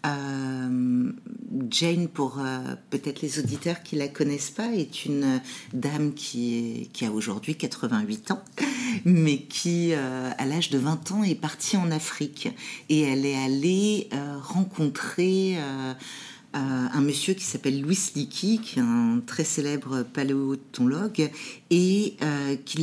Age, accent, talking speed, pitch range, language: 50-69, French, 145 wpm, 135-185 Hz, French